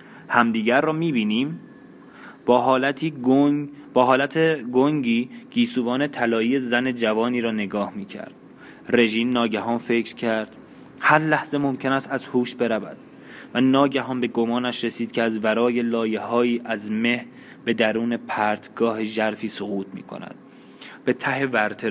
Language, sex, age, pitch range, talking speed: Persian, male, 20-39, 110-135 Hz, 130 wpm